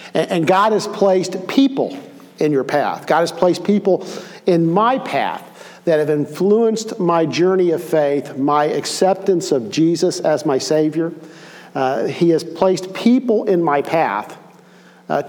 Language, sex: English, male